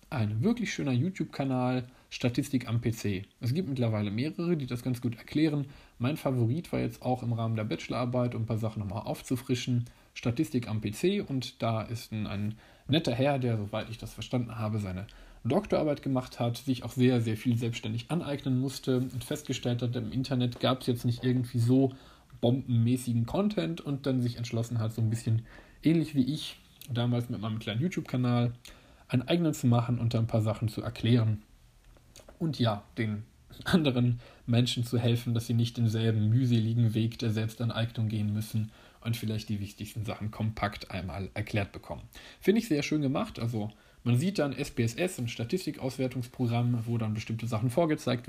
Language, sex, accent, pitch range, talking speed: German, male, German, 110-130 Hz, 175 wpm